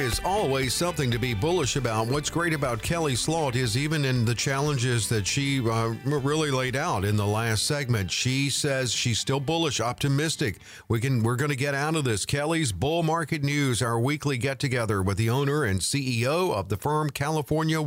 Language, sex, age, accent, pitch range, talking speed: English, male, 50-69, American, 105-145 Hz, 200 wpm